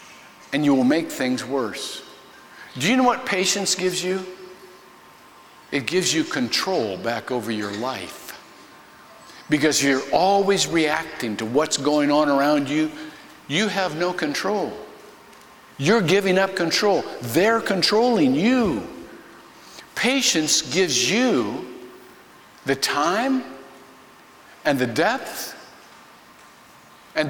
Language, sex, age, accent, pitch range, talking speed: English, male, 50-69, American, 150-230 Hz, 110 wpm